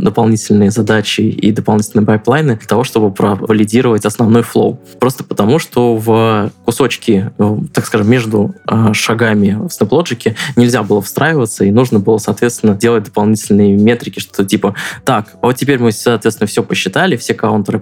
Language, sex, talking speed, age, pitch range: Russian, male, 145 wpm, 20-39, 105-120 Hz